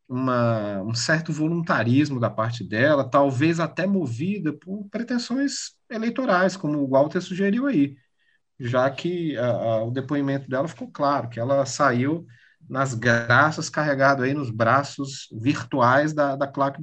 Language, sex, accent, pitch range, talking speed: Portuguese, male, Brazilian, 120-155 Hz, 145 wpm